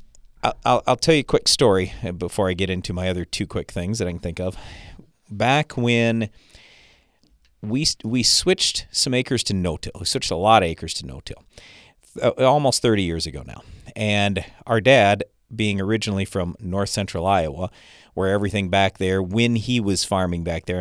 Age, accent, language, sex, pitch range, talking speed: 40-59, American, English, male, 90-115 Hz, 180 wpm